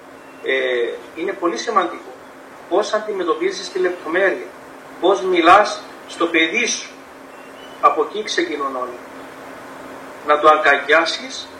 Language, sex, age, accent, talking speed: Greek, male, 40-59, native, 100 wpm